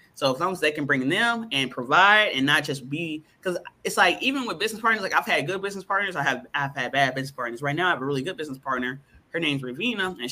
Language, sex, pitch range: English, male, 135-180 Hz